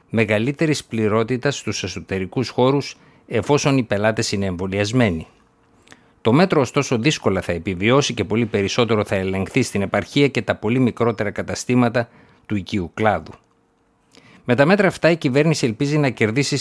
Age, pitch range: 50-69, 100-130 Hz